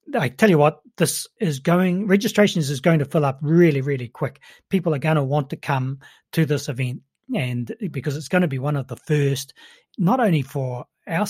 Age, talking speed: 30-49, 210 wpm